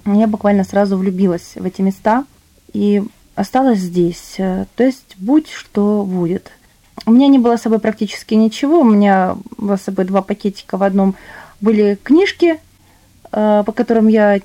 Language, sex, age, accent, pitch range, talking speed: Russian, female, 20-39, native, 195-230 Hz, 155 wpm